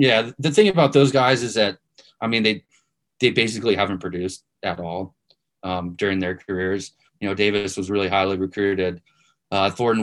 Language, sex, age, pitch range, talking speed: English, male, 20-39, 95-110 Hz, 180 wpm